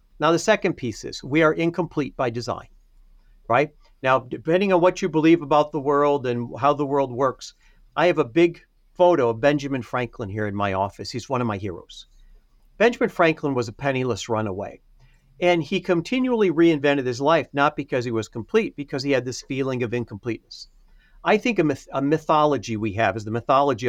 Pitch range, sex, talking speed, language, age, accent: 115-165 Hz, male, 190 wpm, English, 50-69, American